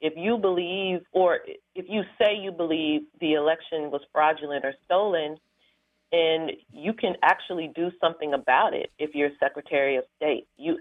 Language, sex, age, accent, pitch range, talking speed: English, female, 40-59, American, 150-185 Hz, 160 wpm